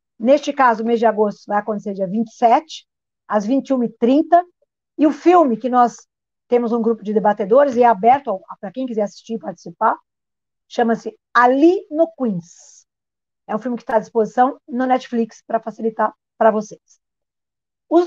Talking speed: 165 wpm